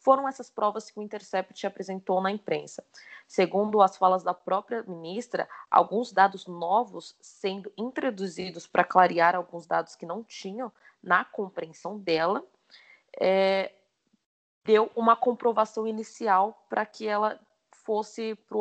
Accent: Brazilian